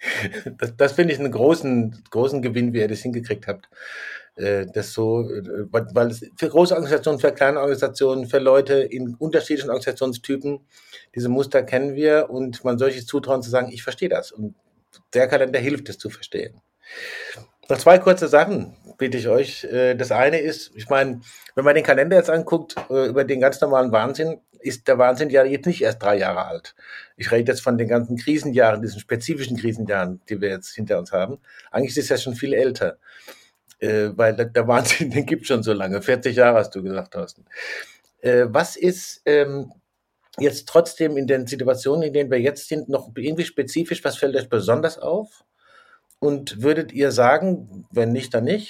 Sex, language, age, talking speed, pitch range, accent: male, German, 50-69, 185 wpm, 120-155 Hz, German